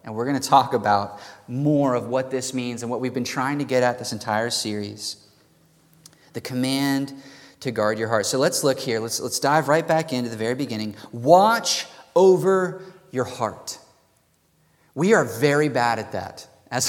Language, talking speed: English, 185 wpm